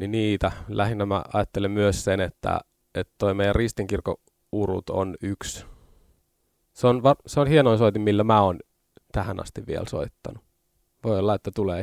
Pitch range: 95-110 Hz